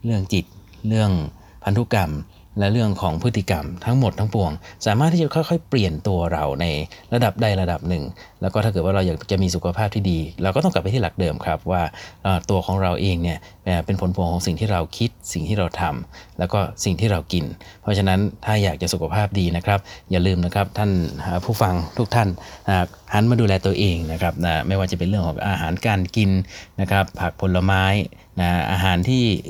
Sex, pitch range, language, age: male, 90-110 Hz, Thai, 30-49